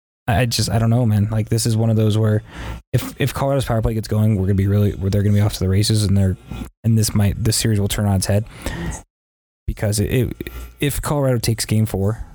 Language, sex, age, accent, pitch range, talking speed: English, male, 20-39, American, 95-115 Hz, 260 wpm